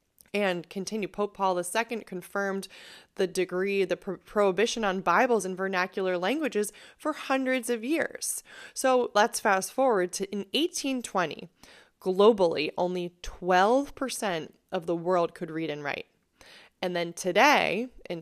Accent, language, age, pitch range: American, English, 20-39, 170-210 Hz